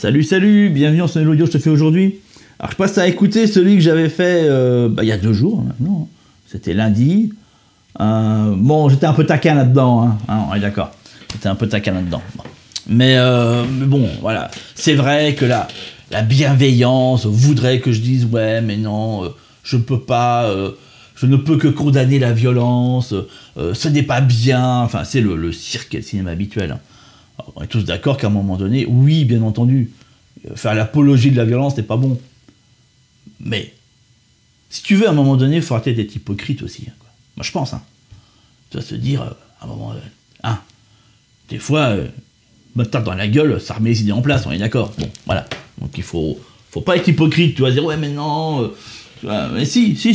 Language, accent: French, French